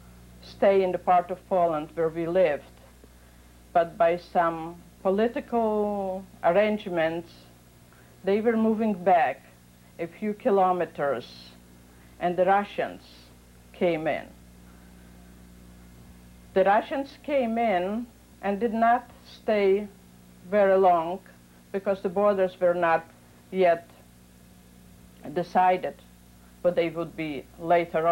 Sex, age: female, 50-69